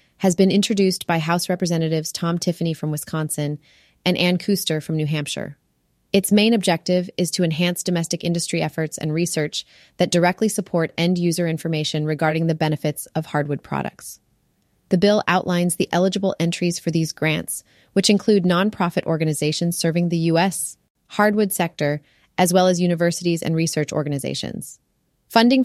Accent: American